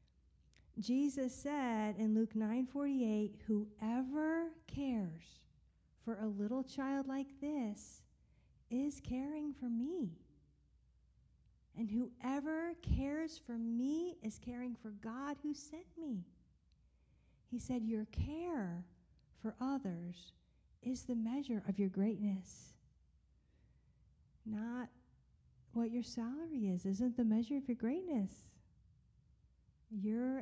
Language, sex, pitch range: English, female, 210-260 Hz